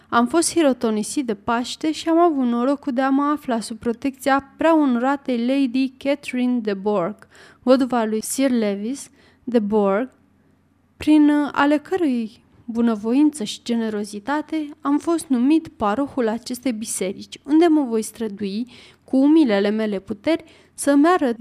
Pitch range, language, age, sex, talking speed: 220-275 Hz, Romanian, 30-49, female, 135 wpm